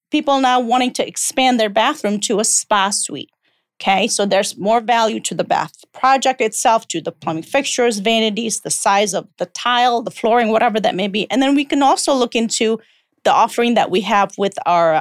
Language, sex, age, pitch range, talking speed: English, female, 40-59, 190-245 Hz, 205 wpm